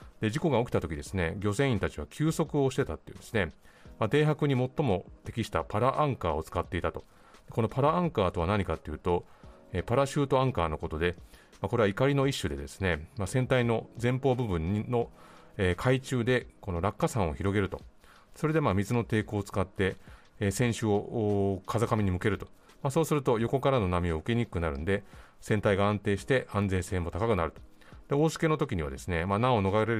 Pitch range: 95-130 Hz